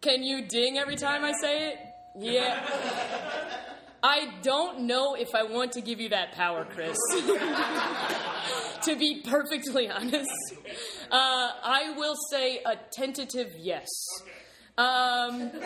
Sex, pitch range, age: female, 195-270 Hz, 20-39